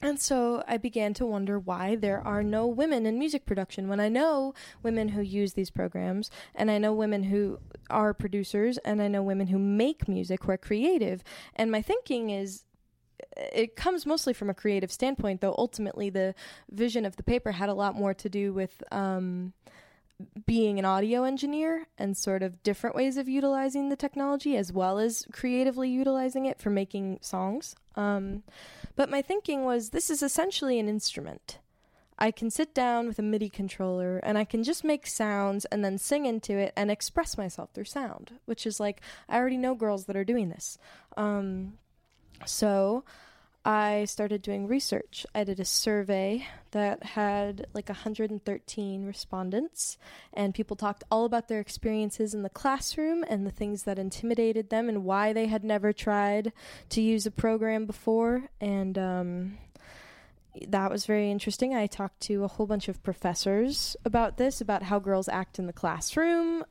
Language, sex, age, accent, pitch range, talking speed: English, female, 10-29, American, 200-240 Hz, 175 wpm